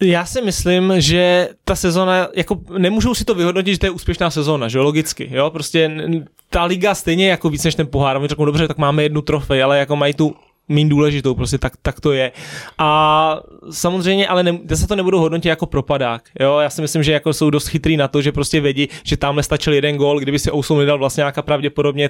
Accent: native